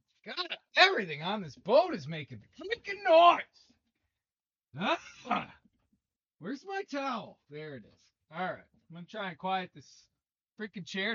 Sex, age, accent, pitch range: male, 40-59, American, 135-200 Hz